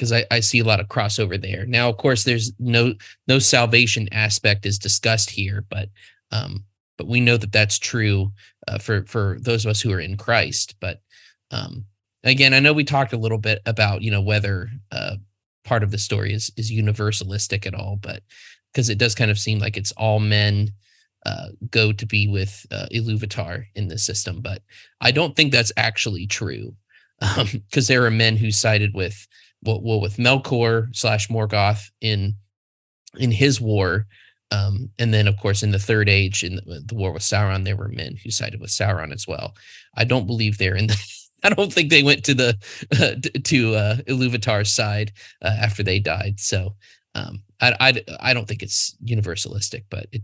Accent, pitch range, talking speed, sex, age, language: American, 100-120 Hz, 200 wpm, male, 20-39, English